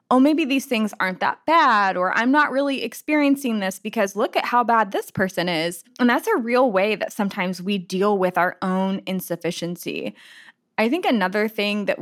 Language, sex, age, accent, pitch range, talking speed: English, female, 20-39, American, 185-245 Hz, 195 wpm